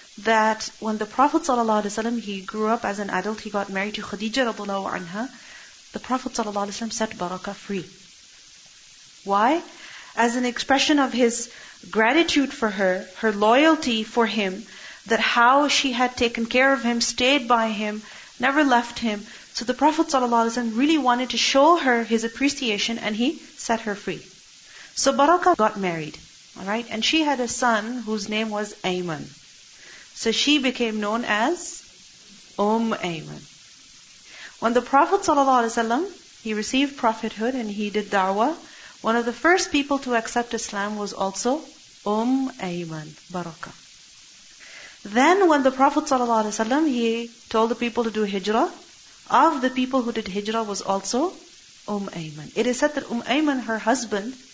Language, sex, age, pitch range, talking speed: English, female, 40-59, 210-265 Hz, 155 wpm